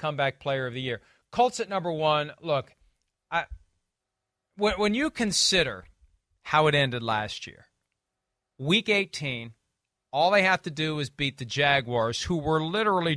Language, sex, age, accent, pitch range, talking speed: English, male, 40-59, American, 125-165 Hz, 155 wpm